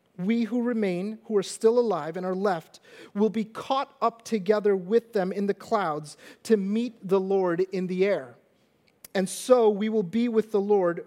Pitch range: 200-240 Hz